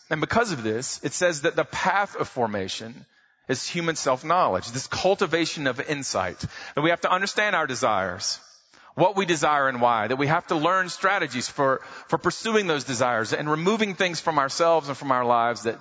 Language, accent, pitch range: English, American, 120-175 Hz